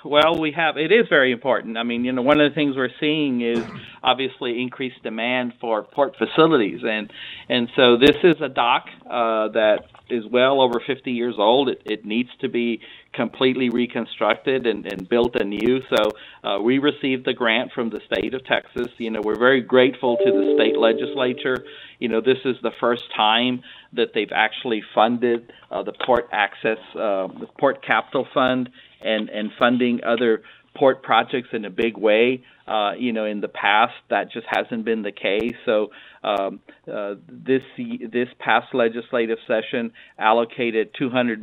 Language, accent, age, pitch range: English, American, 50-69, 110-130 Hz